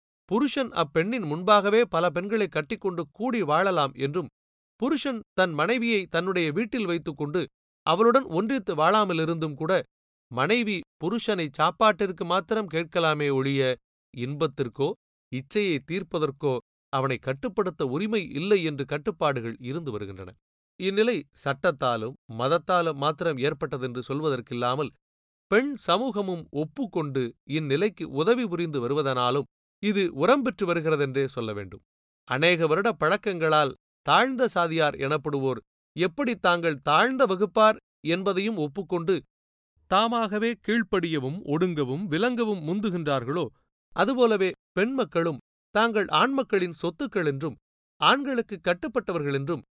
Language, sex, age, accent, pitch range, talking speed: Tamil, male, 30-49, native, 140-210 Hz, 95 wpm